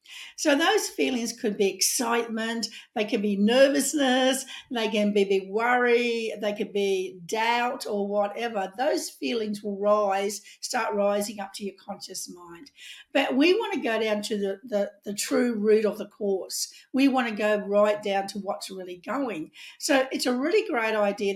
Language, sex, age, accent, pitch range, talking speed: English, female, 50-69, Australian, 205-255 Hz, 175 wpm